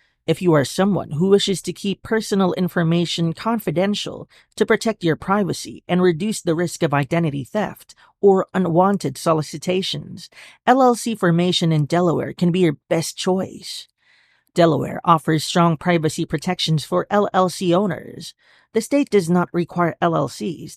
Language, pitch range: English, 160-200 Hz